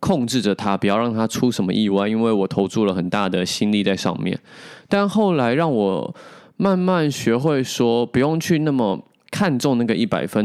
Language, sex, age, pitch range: Chinese, male, 20-39, 100-140 Hz